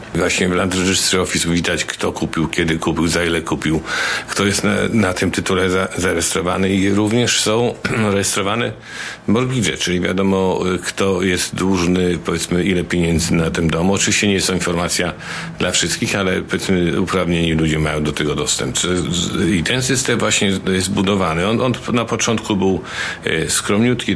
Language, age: Polish, 50-69